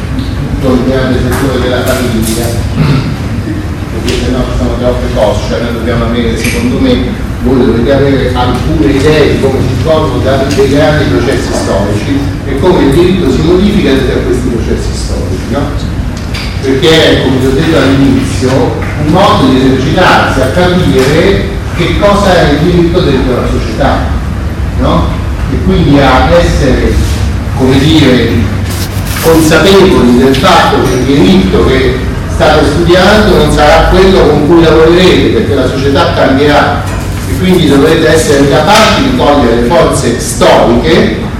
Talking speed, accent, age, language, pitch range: 145 wpm, native, 40-59, Italian, 110-170 Hz